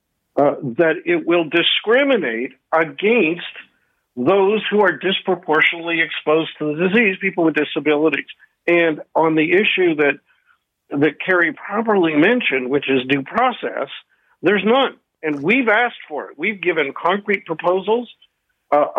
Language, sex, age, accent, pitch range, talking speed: English, male, 50-69, American, 150-200 Hz, 135 wpm